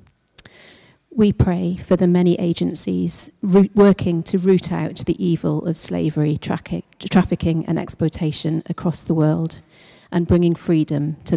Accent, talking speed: British, 125 wpm